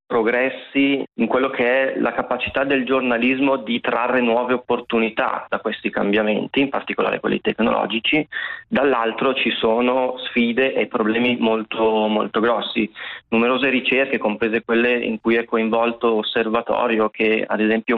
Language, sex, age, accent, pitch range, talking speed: Italian, male, 30-49, native, 110-125 Hz, 135 wpm